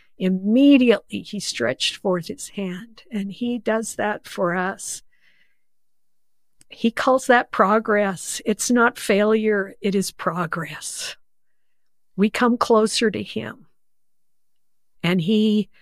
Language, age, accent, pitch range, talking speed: English, 50-69, American, 180-220 Hz, 110 wpm